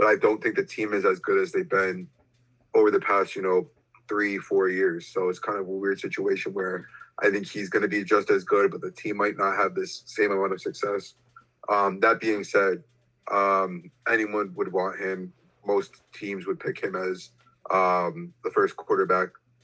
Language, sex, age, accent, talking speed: English, male, 20-39, American, 205 wpm